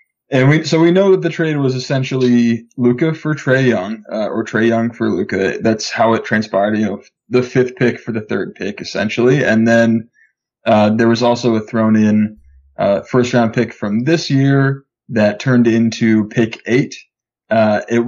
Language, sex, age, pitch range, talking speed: English, male, 20-39, 110-130 Hz, 195 wpm